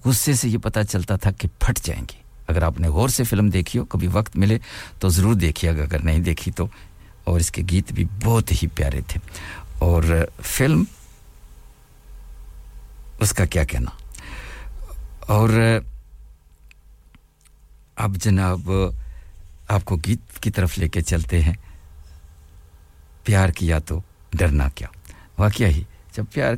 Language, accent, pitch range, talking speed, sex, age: English, Indian, 80-105 Hz, 130 wpm, male, 60-79